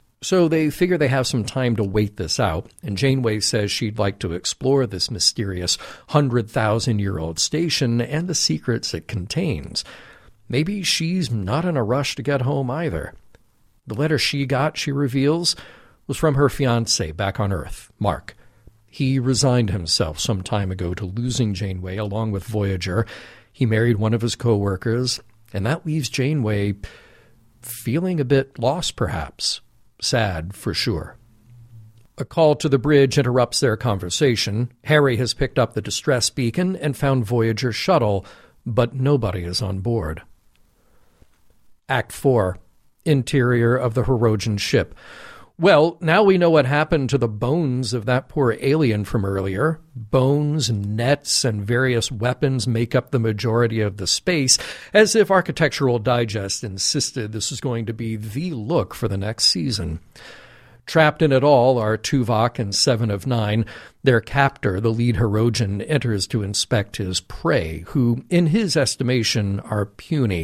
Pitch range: 105-140 Hz